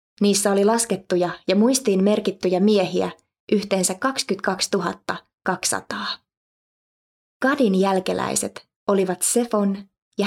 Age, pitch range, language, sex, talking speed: 20-39, 185-225 Hz, Finnish, female, 90 wpm